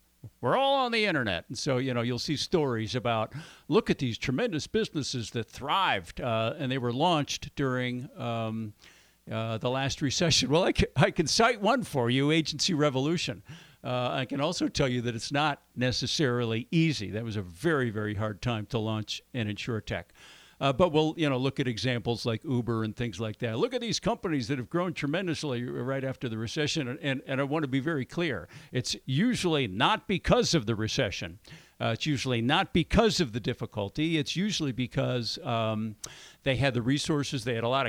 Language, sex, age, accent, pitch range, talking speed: English, male, 60-79, American, 120-155 Hz, 200 wpm